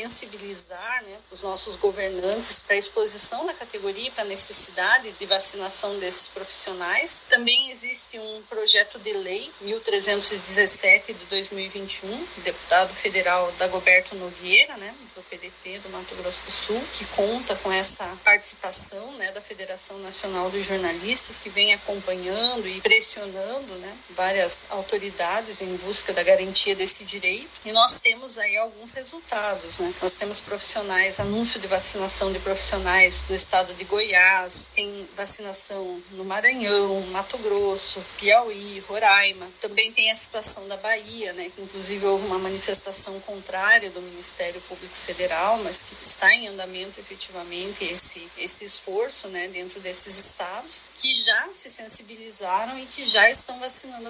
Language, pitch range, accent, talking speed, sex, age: Portuguese, 190-225 Hz, Brazilian, 145 wpm, female, 40-59